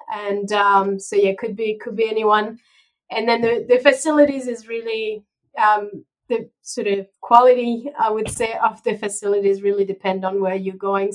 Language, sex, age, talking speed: English, female, 30-49, 185 wpm